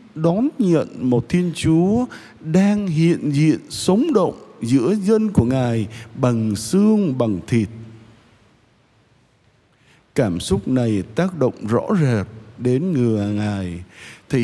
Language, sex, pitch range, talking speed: Vietnamese, male, 115-175 Hz, 120 wpm